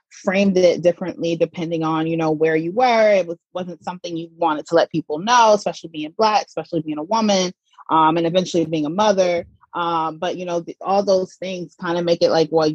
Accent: American